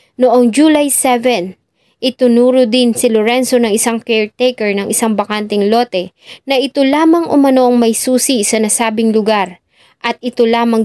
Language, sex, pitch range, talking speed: English, female, 215-260 Hz, 145 wpm